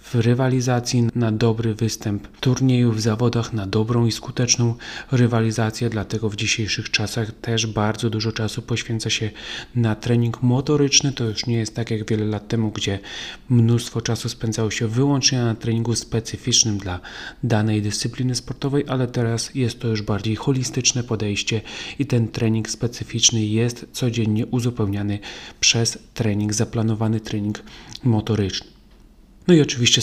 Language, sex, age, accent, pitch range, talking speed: Polish, male, 30-49, native, 110-120 Hz, 140 wpm